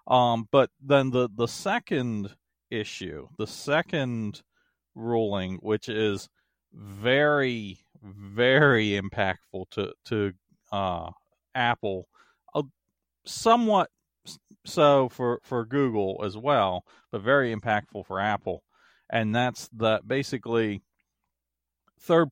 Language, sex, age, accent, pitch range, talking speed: English, male, 40-59, American, 100-135 Hz, 100 wpm